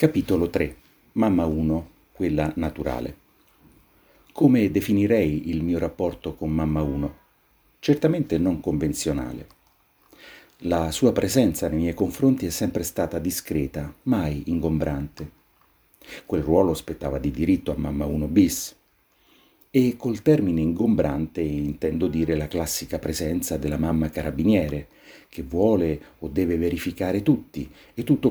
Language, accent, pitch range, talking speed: Italian, native, 75-85 Hz, 125 wpm